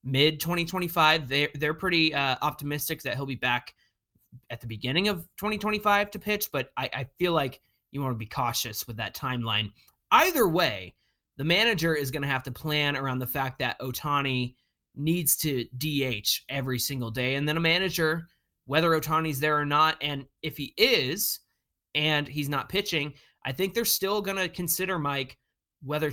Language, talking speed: English, 180 wpm